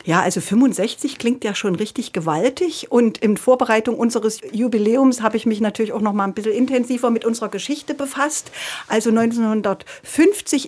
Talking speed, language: 165 wpm, German